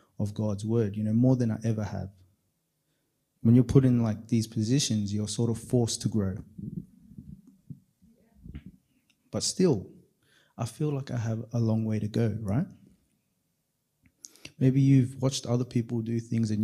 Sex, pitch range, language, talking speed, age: male, 110-130 Hz, English, 160 wpm, 20-39